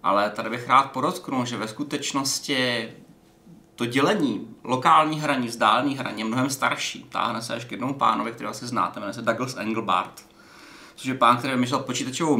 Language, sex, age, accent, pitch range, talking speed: Czech, male, 30-49, native, 120-150 Hz, 175 wpm